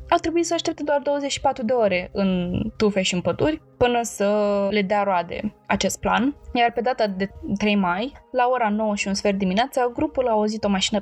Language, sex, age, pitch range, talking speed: Romanian, female, 20-39, 190-235 Hz, 205 wpm